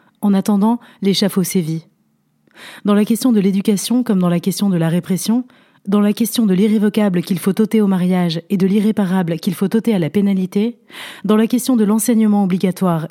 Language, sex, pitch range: French, female, 185-225 Hz